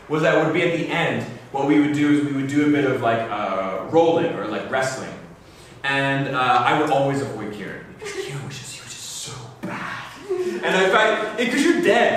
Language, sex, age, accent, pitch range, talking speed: English, male, 20-39, American, 130-195 Hz, 225 wpm